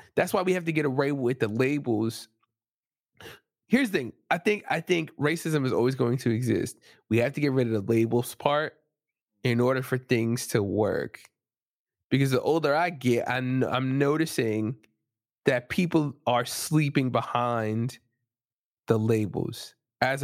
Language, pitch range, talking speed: English, 115-140 Hz, 160 wpm